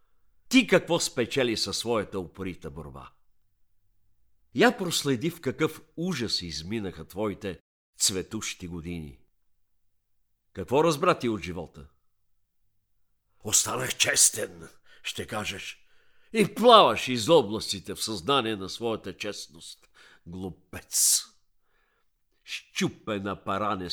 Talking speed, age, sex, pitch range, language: 90 wpm, 50-69, male, 95-140 Hz, Bulgarian